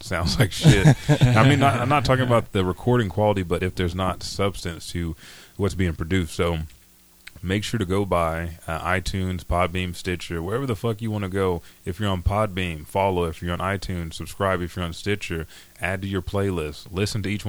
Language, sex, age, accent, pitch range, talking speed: English, male, 30-49, American, 85-100 Hz, 200 wpm